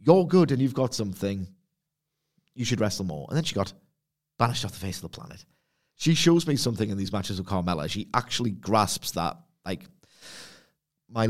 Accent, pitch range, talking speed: British, 105-140 Hz, 190 wpm